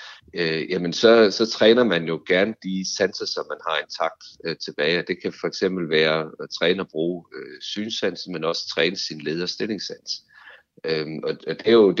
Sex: male